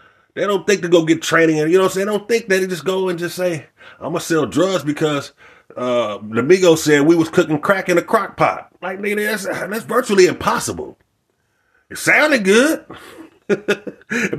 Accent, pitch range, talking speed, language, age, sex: American, 160-205 Hz, 190 wpm, English, 30-49, male